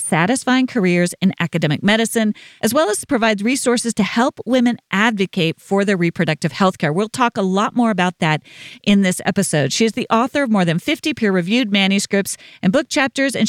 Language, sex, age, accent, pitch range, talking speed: English, female, 40-59, American, 175-245 Hz, 190 wpm